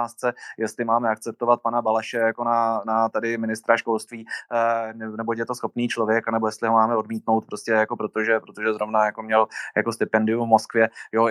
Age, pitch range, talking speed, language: 20-39, 105-115 Hz, 175 wpm, Czech